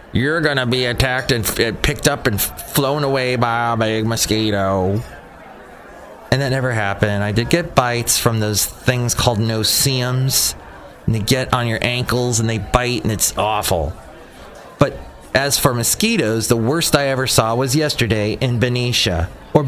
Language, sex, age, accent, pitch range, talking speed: English, male, 30-49, American, 95-125 Hz, 170 wpm